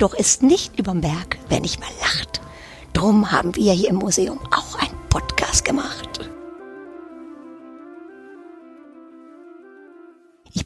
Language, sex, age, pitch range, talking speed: German, female, 50-69, 175-240 Hz, 115 wpm